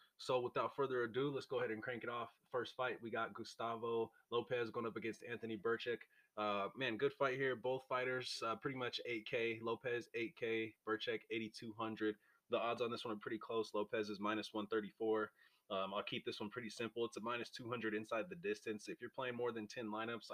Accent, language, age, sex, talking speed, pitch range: American, English, 20-39, male, 205 wpm, 105-120 Hz